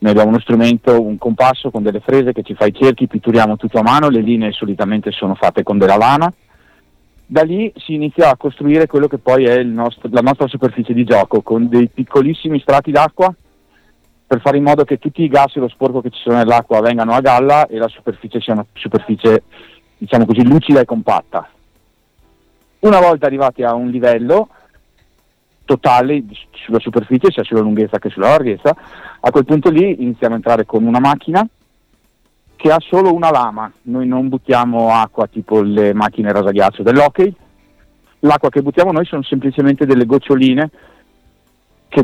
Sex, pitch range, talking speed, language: male, 115-145 Hz, 180 wpm, Italian